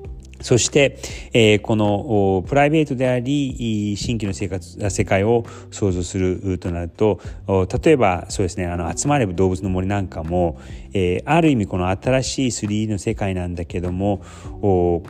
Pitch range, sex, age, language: 90-120 Hz, male, 40-59, Japanese